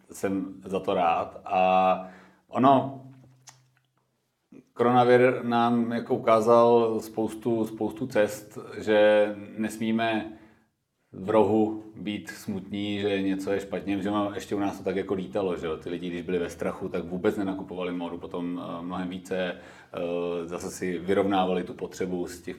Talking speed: 135 wpm